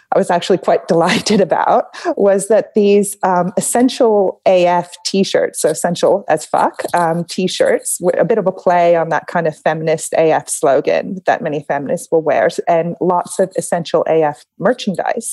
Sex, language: female, English